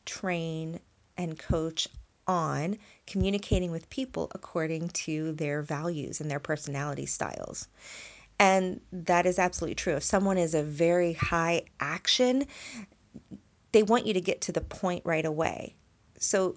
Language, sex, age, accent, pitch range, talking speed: English, female, 30-49, American, 150-190 Hz, 140 wpm